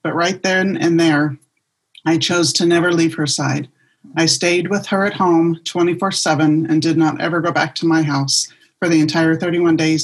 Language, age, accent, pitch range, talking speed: English, 30-49, American, 155-190 Hz, 205 wpm